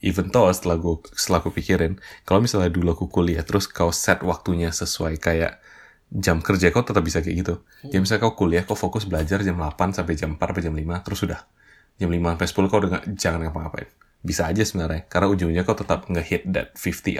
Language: Indonesian